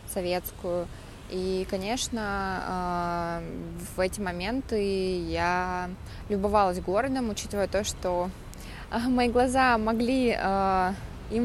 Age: 20-39